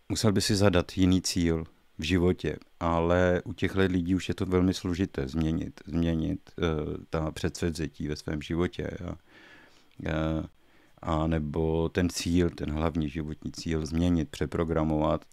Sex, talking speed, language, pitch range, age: male, 135 wpm, Czech, 80-90 Hz, 50-69